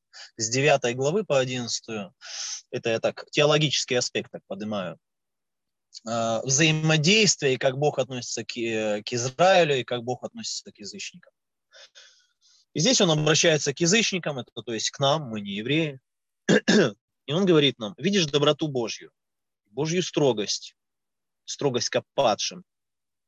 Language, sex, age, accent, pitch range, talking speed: Russian, male, 20-39, native, 125-175 Hz, 125 wpm